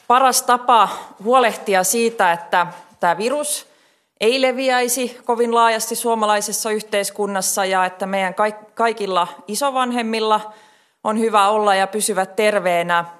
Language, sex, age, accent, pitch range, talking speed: Finnish, female, 20-39, native, 185-235 Hz, 110 wpm